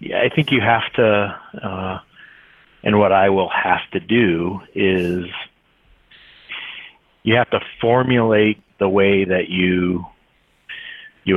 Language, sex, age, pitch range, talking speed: English, male, 40-59, 90-105 Hz, 120 wpm